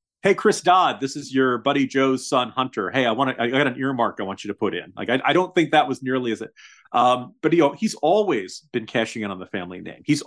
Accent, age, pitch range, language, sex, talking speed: American, 40-59, 110-140 Hz, English, male, 270 wpm